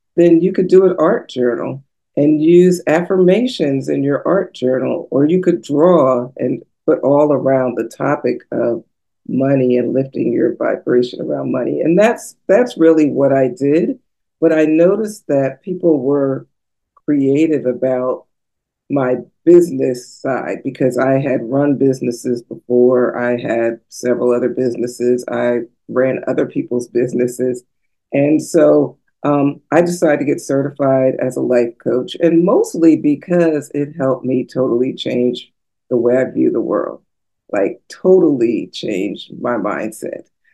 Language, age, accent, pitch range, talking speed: English, 50-69, American, 130-170 Hz, 145 wpm